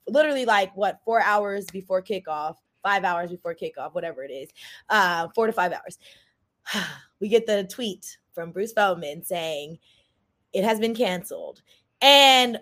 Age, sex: 20-39, female